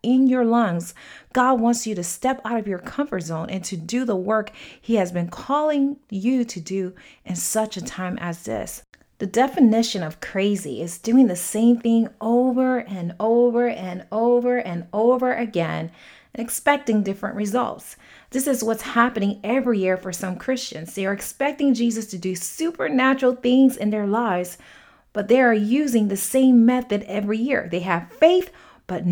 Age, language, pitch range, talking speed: 30-49, English, 190-250 Hz, 175 wpm